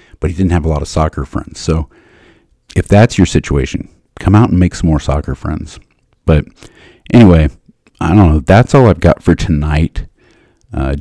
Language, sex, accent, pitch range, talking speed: English, male, American, 75-95 Hz, 185 wpm